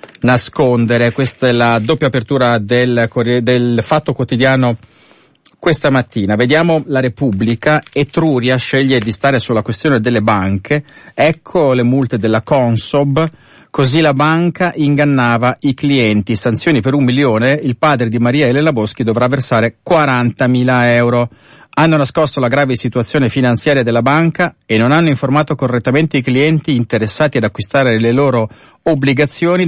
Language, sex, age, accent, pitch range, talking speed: Italian, male, 40-59, native, 115-145 Hz, 140 wpm